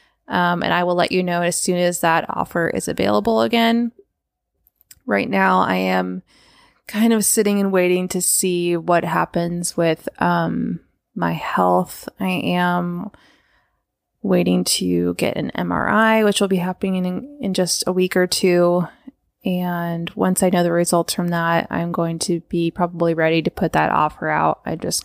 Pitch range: 160-185 Hz